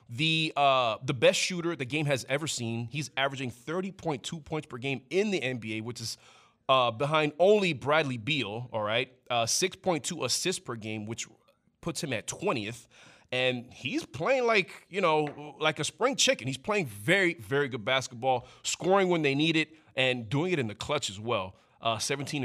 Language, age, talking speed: English, 30-49, 180 wpm